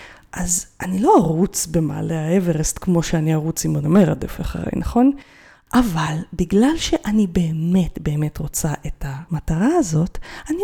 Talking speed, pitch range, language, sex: 135 wpm, 170-235 Hz, Hebrew, female